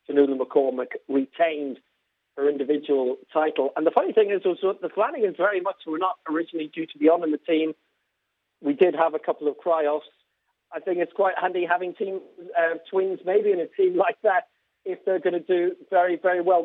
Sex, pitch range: male, 155-205 Hz